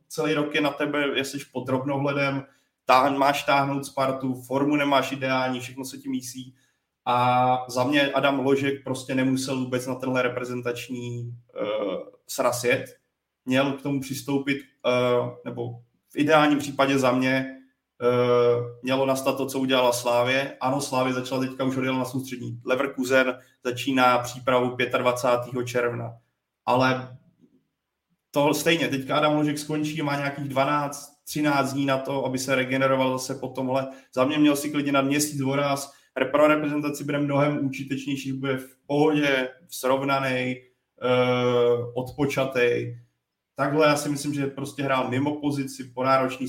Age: 20-39